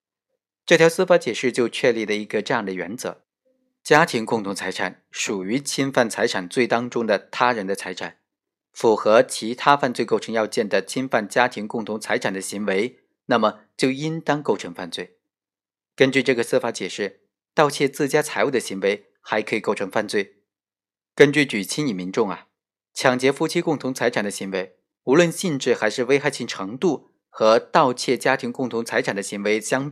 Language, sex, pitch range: Chinese, male, 105-150 Hz